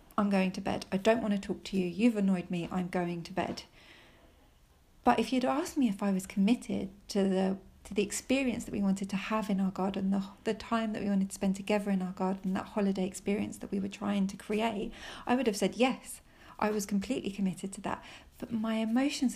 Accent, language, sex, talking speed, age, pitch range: British, English, female, 235 wpm, 40-59, 195-230 Hz